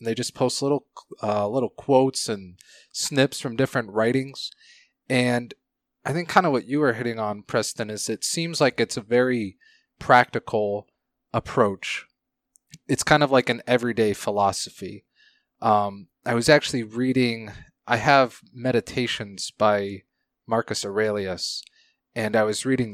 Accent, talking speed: American, 145 wpm